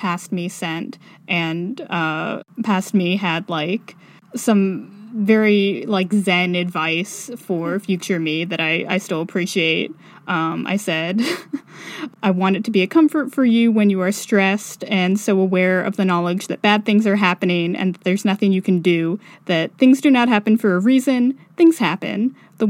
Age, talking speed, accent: 10-29, 175 wpm, American